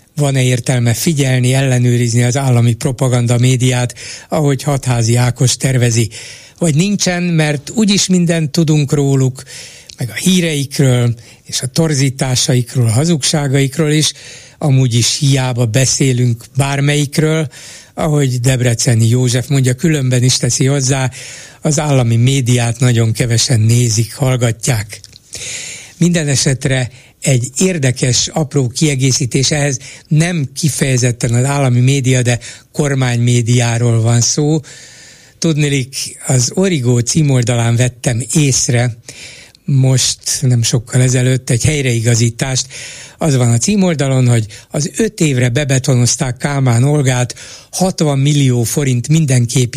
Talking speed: 110 wpm